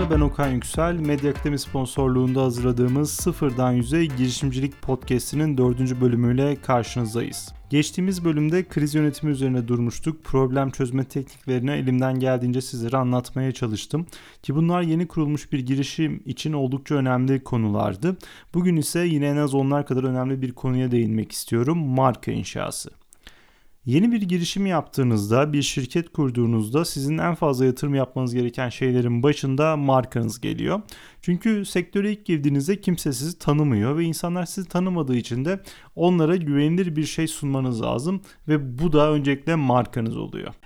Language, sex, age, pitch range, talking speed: Turkish, male, 30-49, 130-165 Hz, 140 wpm